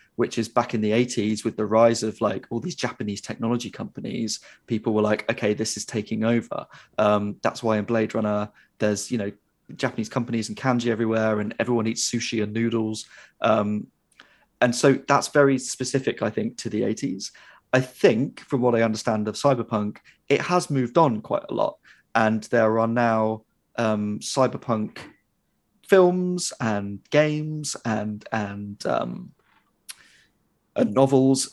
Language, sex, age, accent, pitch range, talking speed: English, male, 20-39, British, 110-125 Hz, 160 wpm